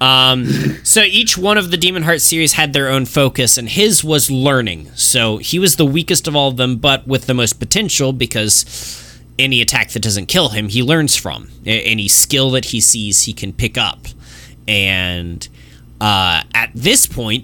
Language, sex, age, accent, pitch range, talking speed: English, male, 20-39, American, 100-140 Hz, 190 wpm